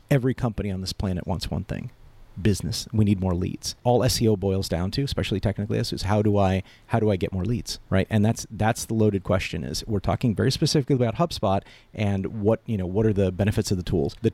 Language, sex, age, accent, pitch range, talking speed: English, male, 40-59, American, 95-120 Hz, 235 wpm